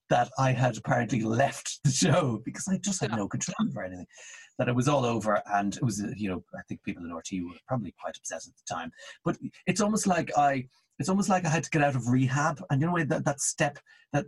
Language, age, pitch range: English, 30-49, 115-160 Hz